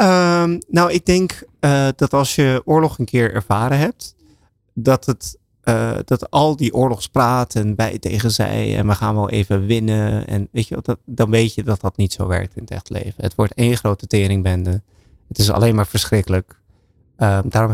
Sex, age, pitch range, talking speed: male, 20-39, 100-115 Hz, 195 wpm